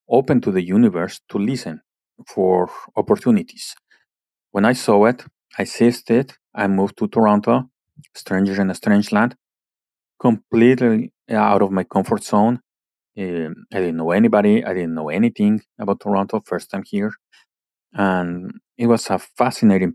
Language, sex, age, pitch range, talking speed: English, male, 40-59, 90-115 Hz, 145 wpm